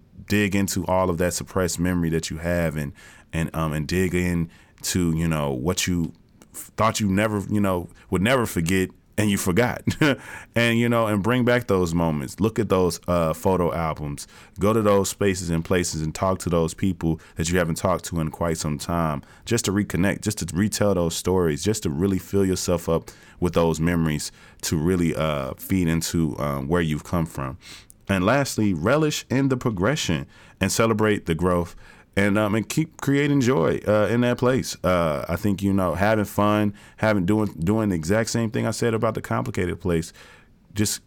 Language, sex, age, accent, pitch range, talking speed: English, male, 20-39, American, 85-105 Hz, 195 wpm